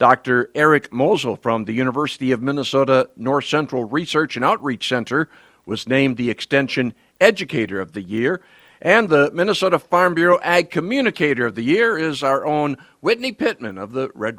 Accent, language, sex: American, English, male